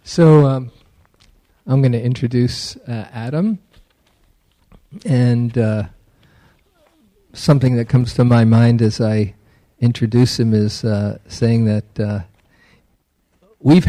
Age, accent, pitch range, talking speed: 50-69, American, 115-145 Hz, 110 wpm